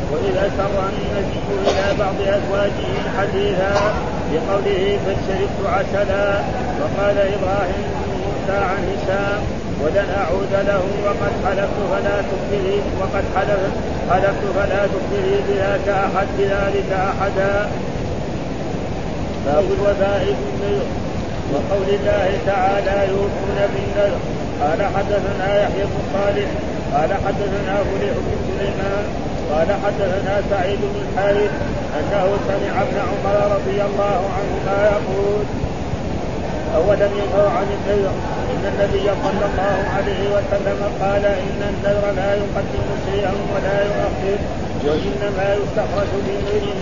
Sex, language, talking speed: male, Arabic, 105 wpm